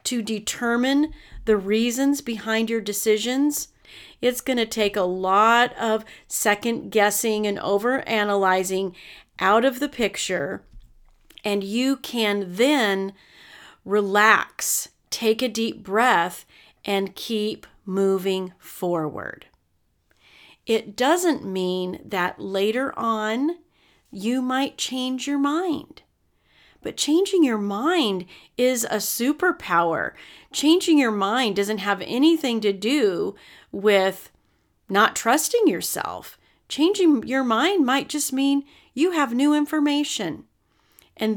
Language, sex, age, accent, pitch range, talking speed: English, female, 40-59, American, 200-275 Hz, 110 wpm